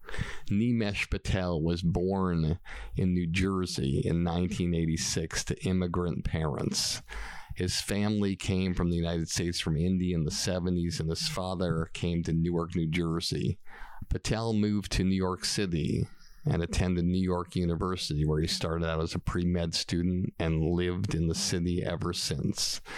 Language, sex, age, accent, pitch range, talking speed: English, male, 50-69, American, 85-95 Hz, 150 wpm